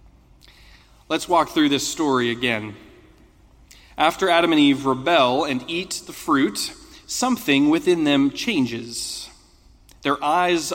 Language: English